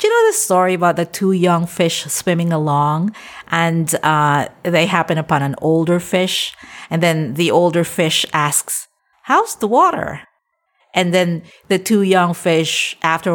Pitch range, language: 150-195 Hz, English